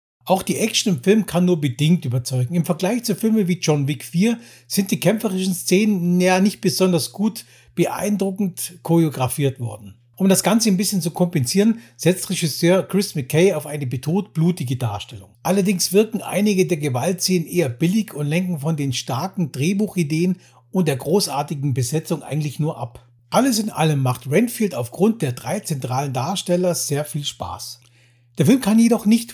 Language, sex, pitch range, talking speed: German, male, 140-195 Hz, 165 wpm